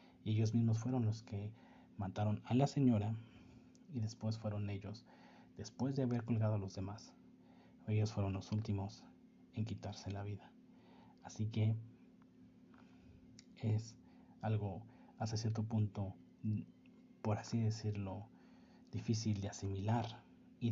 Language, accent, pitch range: Spanish, Mexican, 100-120 Hz